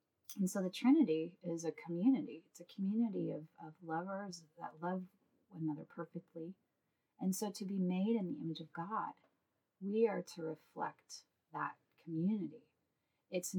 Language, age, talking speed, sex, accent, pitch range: English, 30-49, 155 wpm, female, American, 155-190 Hz